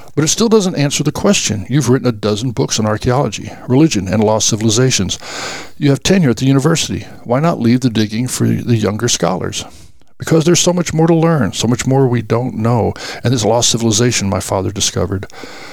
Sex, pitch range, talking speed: male, 105-130 Hz, 200 wpm